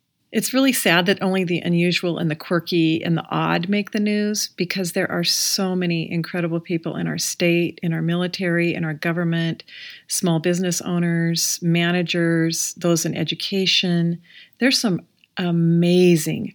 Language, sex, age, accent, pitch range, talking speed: English, female, 40-59, American, 165-195 Hz, 150 wpm